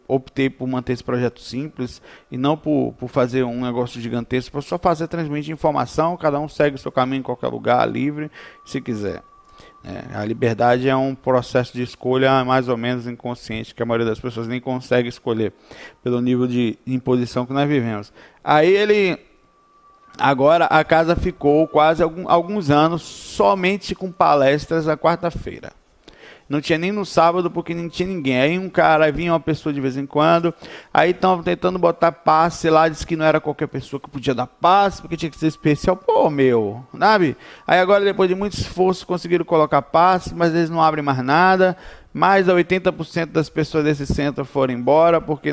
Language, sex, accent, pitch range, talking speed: Portuguese, male, Brazilian, 125-170 Hz, 185 wpm